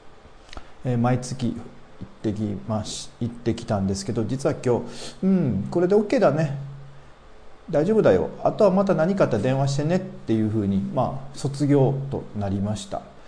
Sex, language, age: male, Japanese, 40-59